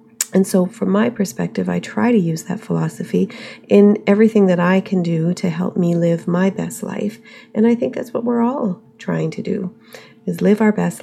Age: 40-59